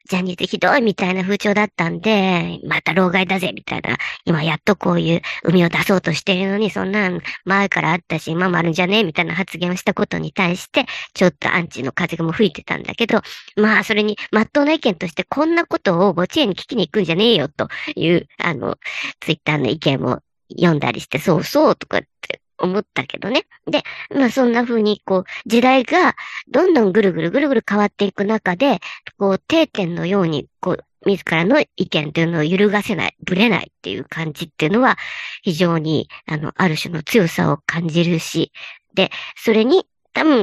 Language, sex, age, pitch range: Japanese, male, 50-69, 170-220 Hz